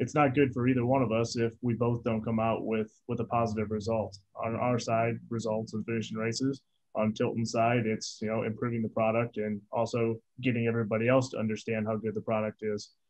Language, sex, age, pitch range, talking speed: English, male, 20-39, 115-125 Hz, 215 wpm